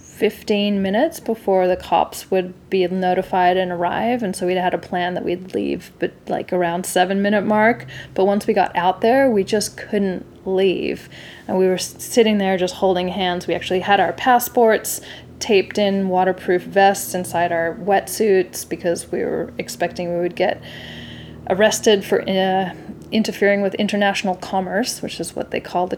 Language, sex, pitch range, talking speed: English, female, 185-215 Hz, 175 wpm